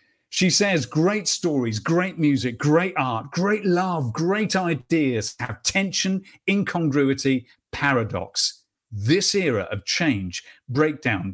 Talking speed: 110 wpm